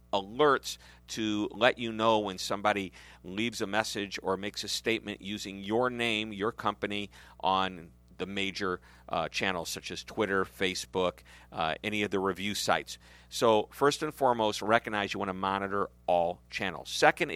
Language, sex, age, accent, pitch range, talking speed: English, male, 50-69, American, 95-115 Hz, 160 wpm